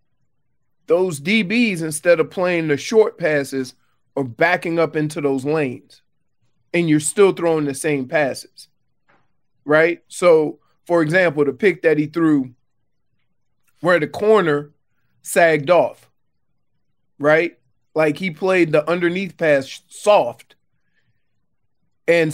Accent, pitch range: American, 145-175 Hz